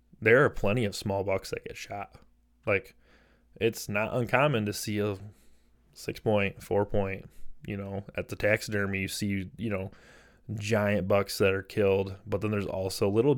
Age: 20-39